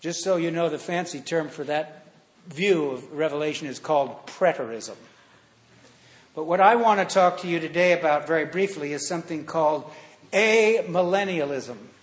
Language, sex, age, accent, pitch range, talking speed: English, male, 60-79, American, 155-190 Hz, 155 wpm